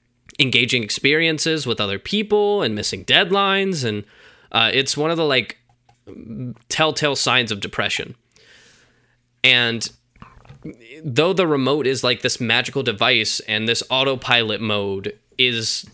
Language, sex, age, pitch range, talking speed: English, male, 20-39, 115-145 Hz, 125 wpm